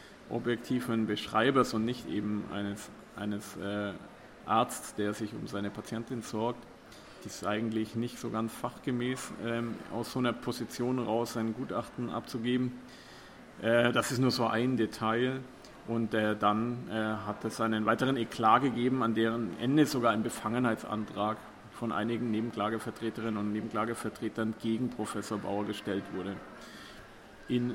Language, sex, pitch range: German, male, 110-120 Hz